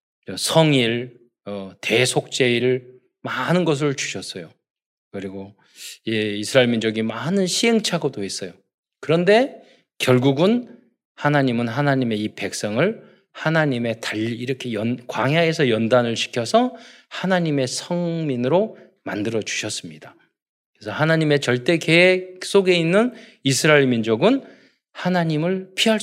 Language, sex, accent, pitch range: Korean, male, native, 115-175 Hz